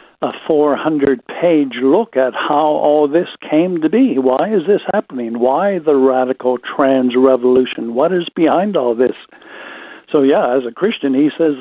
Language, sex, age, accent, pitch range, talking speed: English, male, 60-79, American, 130-165 Hz, 155 wpm